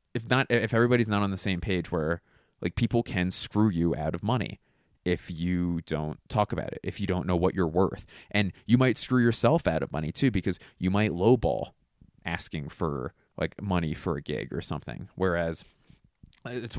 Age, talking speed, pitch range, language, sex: 20-39, 195 wpm, 85-110 Hz, English, male